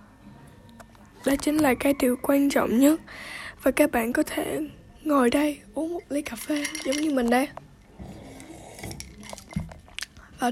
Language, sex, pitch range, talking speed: Vietnamese, female, 255-305 Hz, 145 wpm